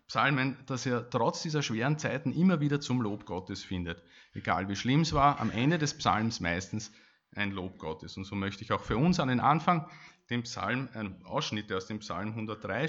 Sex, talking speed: male, 205 wpm